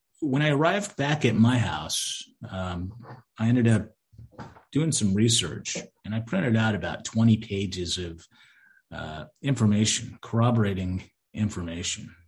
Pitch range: 95-115 Hz